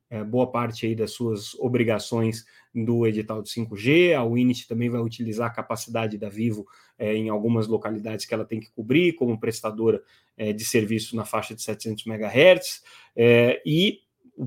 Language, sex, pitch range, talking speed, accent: Portuguese, male, 115-130 Hz, 175 wpm, Brazilian